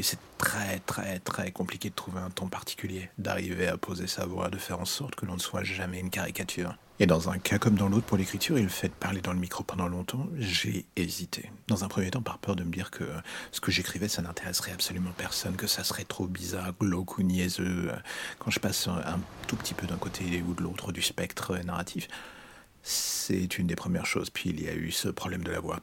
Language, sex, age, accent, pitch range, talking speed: French, male, 40-59, French, 90-100 Hz, 240 wpm